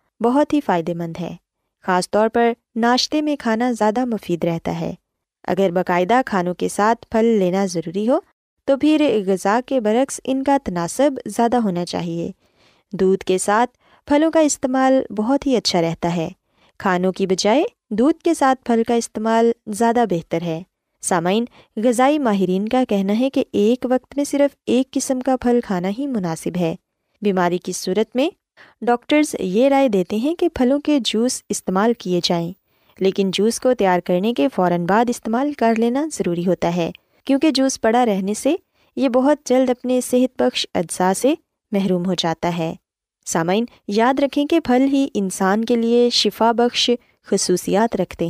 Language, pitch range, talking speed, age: Urdu, 185-260 Hz, 170 wpm, 20-39